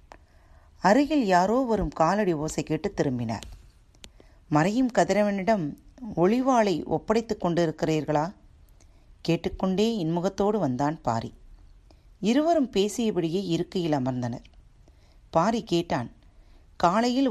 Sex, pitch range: female, 140-200 Hz